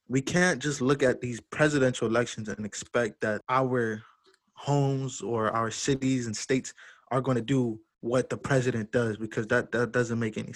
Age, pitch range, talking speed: 20-39, 115-140 Hz, 180 wpm